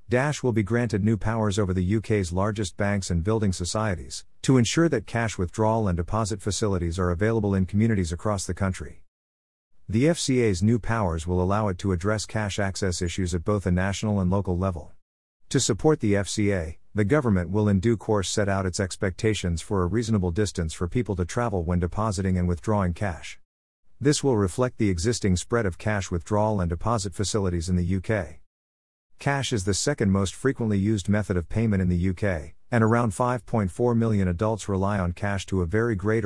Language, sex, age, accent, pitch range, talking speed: English, male, 50-69, American, 90-110 Hz, 190 wpm